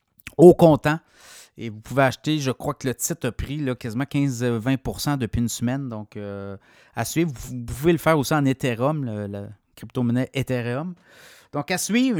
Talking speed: 185 wpm